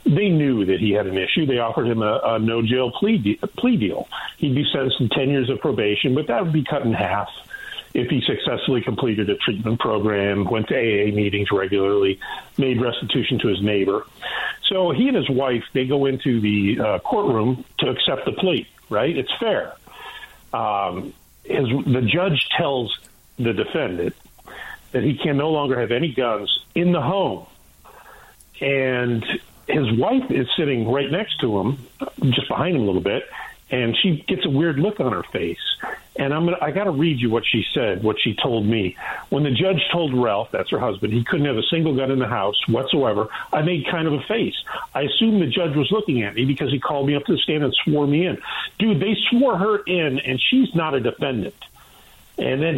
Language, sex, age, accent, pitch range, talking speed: English, male, 50-69, American, 120-165 Hz, 205 wpm